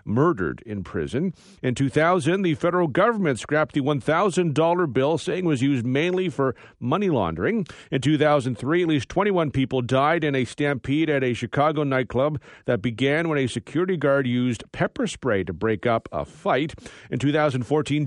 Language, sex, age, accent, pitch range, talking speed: English, male, 40-59, American, 120-155 Hz, 165 wpm